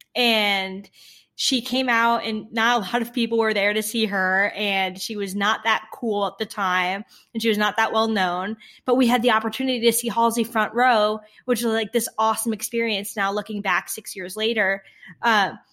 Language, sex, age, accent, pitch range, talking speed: English, female, 10-29, American, 200-230 Hz, 205 wpm